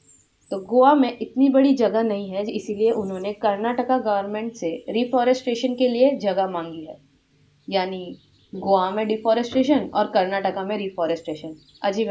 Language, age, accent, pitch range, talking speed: Hindi, 20-39, native, 195-250 Hz, 140 wpm